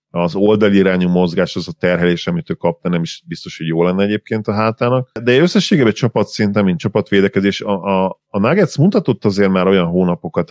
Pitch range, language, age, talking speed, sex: 85-105 Hz, Hungarian, 40-59, 190 wpm, male